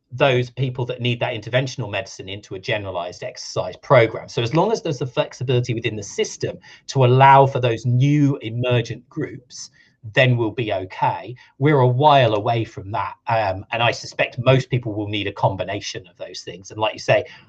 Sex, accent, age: male, British, 40-59